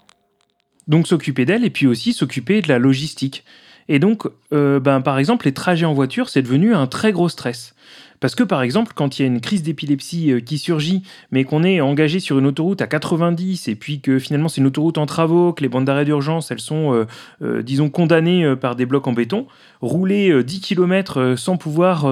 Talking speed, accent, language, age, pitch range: 215 wpm, French, French, 30-49, 130-170 Hz